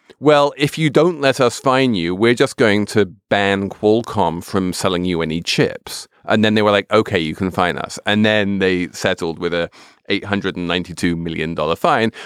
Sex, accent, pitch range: male, British, 85-115 Hz